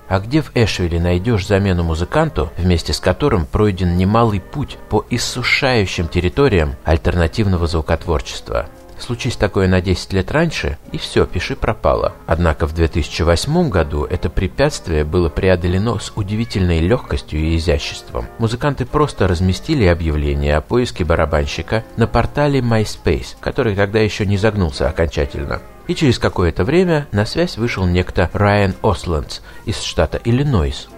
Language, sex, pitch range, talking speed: Russian, male, 85-110 Hz, 135 wpm